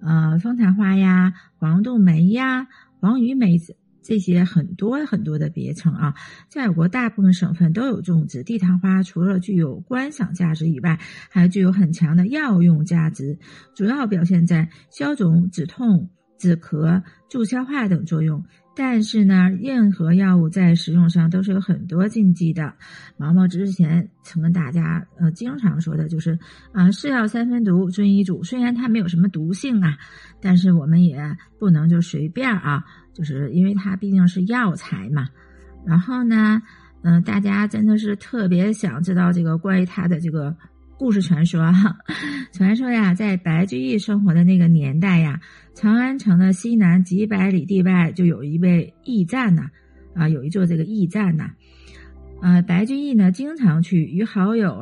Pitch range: 165-205 Hz